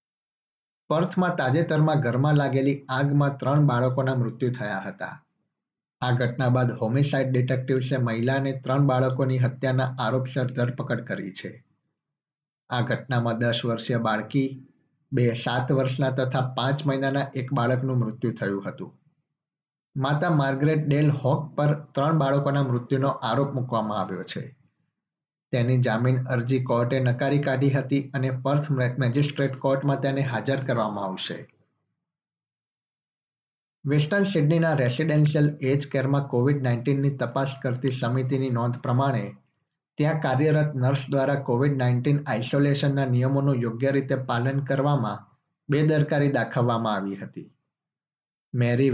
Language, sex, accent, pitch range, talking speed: Gujarati, male, native, 125-140 Hz, 65 wpm